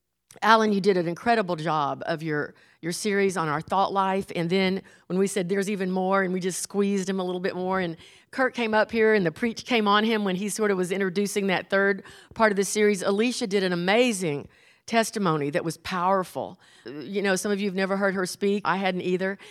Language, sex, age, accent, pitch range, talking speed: English, female, 50-69, American, 180-215 Hz, 230 wpm